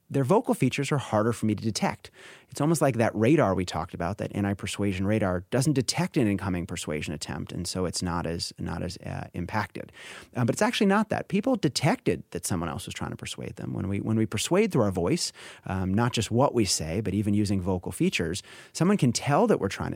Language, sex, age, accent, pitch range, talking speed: English, male, 30-49, American, 100-145 Hz, 230 wpm